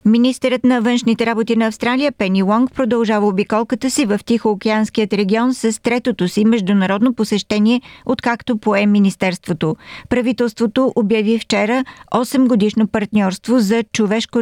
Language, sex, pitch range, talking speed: Bulgarian, female, 200-230 Hz, 125 wpm